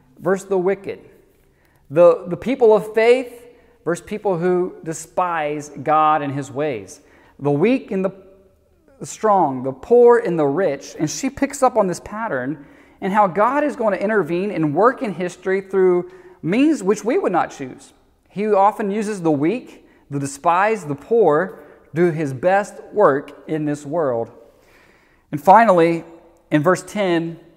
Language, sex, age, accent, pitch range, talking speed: English, male, 30-49, American, 155-210 Hz, 160 wpm